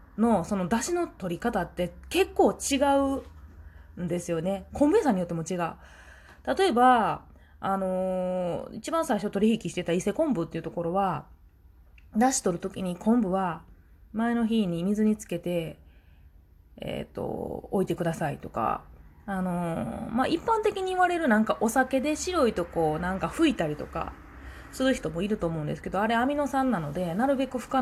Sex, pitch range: female, 165-255 Hz